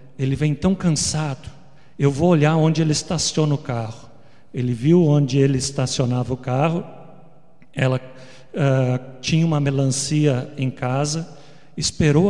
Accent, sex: Brazilian, male